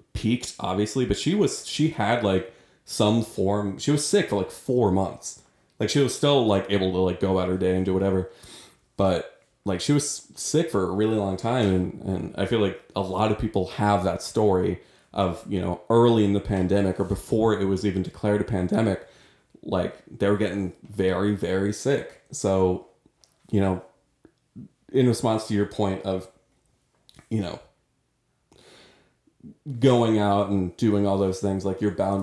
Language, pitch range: English, 95-110 Hz